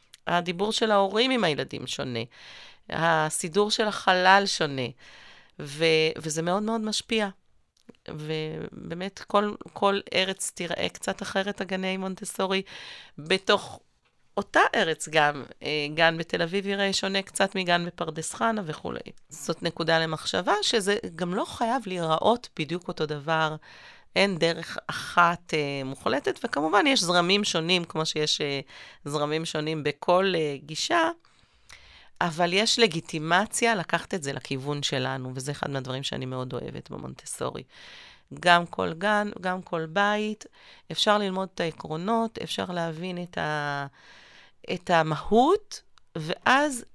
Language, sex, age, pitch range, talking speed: Hebrew, female, 40-59, 155-205 Hz, 125 wpm